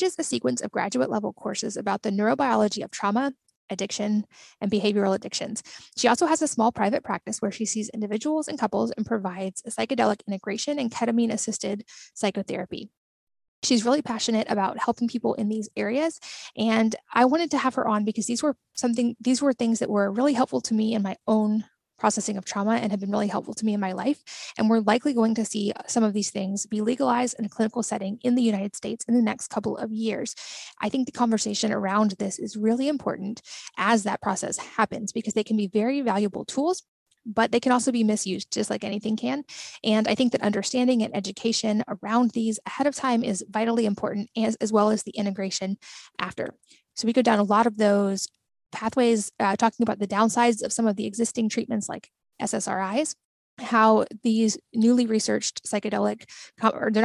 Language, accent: English, American